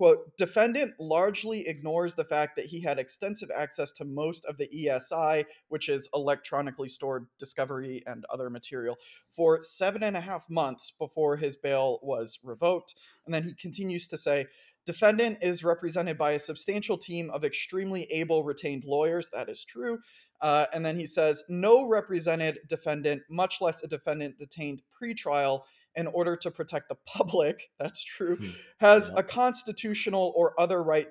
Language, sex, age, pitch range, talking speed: English, male, 20-39, 145-180 Hz, 165 wpm